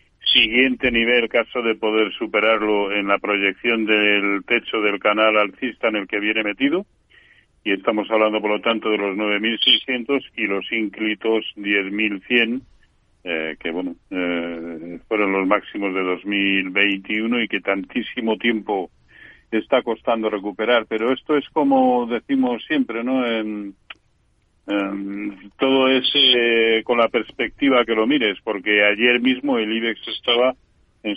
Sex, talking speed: male, 135 wpm